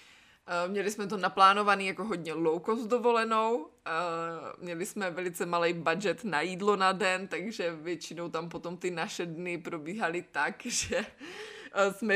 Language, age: Czech, 20-39